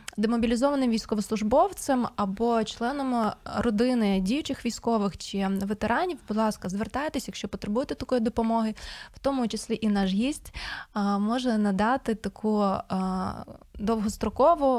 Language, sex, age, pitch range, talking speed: Ukrainian, female, 20-39, 200-240 Hz, 105 wpm